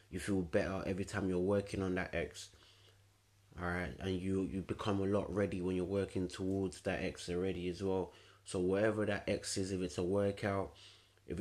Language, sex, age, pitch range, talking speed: English, male, 20-39, 90-100 Hz, 200 wpm